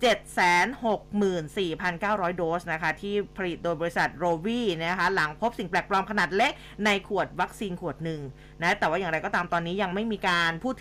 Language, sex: Thai, female